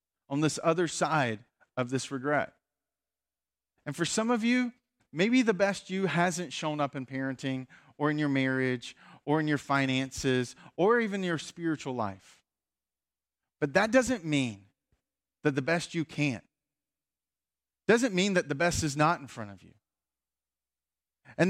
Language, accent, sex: English, American, male